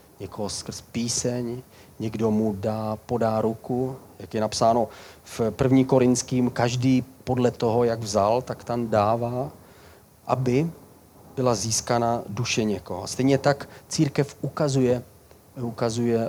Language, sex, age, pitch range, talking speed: Czech, male, 40-59, 110-130 Hz, 120 wpm